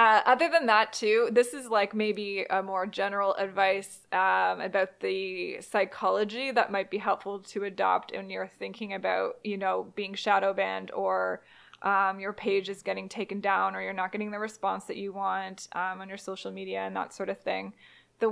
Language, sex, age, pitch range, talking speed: English, female, 20-39, 190-215 Hz, 195 wpm